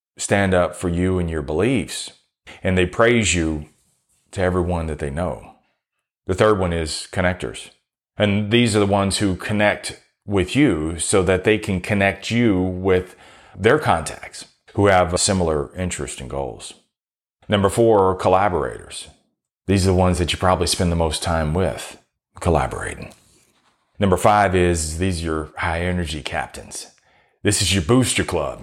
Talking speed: 155 wpm